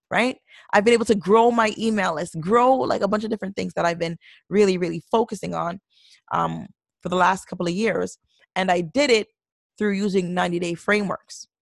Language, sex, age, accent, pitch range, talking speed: English, female, 20-39, American, 180-230 Hz, 200 wpm